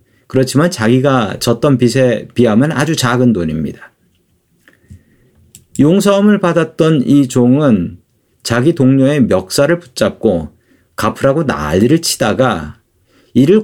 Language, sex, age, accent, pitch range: Korean, male, 40-59, native, 110-145 Hz